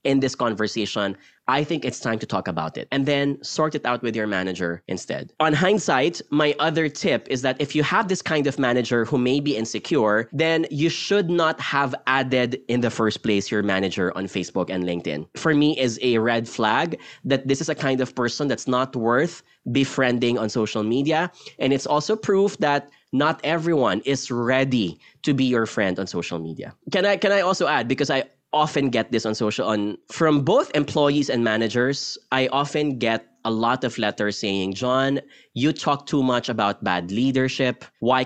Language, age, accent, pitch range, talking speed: English, 20-39, Filipino, 115-150 Hz, 195 wpm